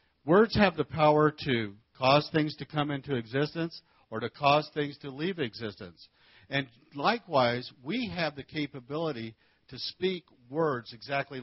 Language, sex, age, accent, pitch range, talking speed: English, male, 60-79, American, 95-150 Hz, 145 wpm